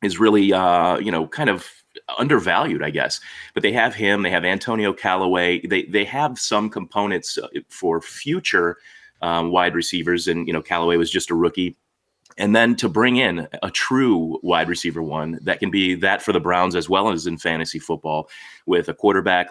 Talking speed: 190 wpm